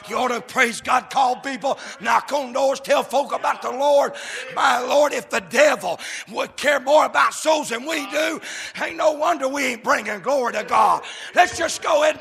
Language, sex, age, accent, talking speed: English, male, 60-79, American, 205 wpm